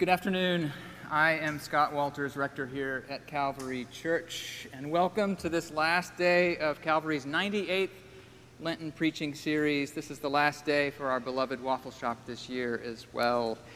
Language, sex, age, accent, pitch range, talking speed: English, male, 40-59, American, 140-175 Hz, 160 wpm